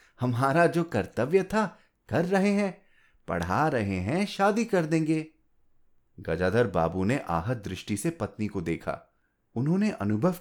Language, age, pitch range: Hindi, 30-49, 95-160 Hz